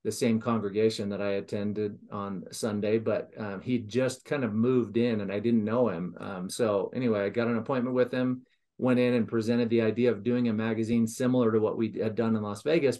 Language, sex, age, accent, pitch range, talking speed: English, male, 40-59, American, 105-120 Hz, 225 wpm